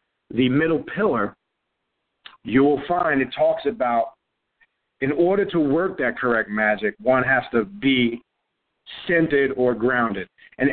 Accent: American